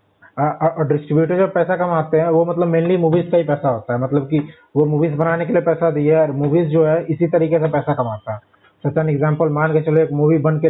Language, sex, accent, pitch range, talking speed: Hindi, male, native, 145-165 Hz, 235 wpm